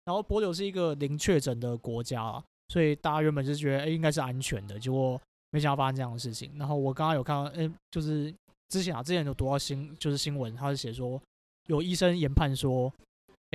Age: 20-39